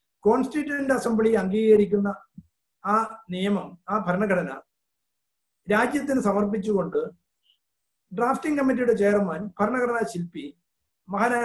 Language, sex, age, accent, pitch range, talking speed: Malayalam, male, 50-69, native, 200-250 Hz, 80 wpm